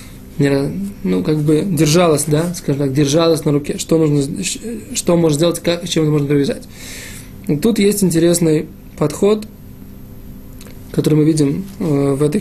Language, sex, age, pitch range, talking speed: Russian, male, 20-39, 140-170 Hz, 155 wpm